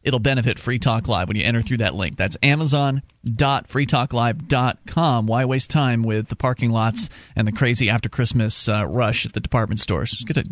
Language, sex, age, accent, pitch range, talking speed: English, male, 30-49, American, 120-170 Hz, 175 wpm